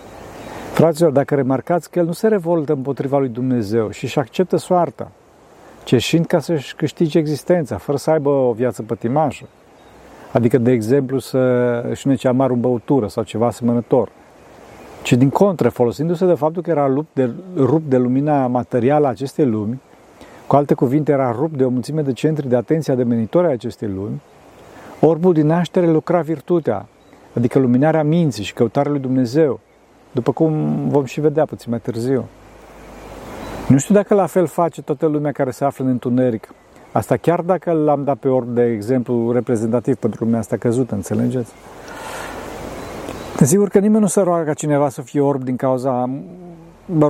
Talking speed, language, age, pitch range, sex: 170 wpm, Romanian, 50-69, 125-160 Hz, male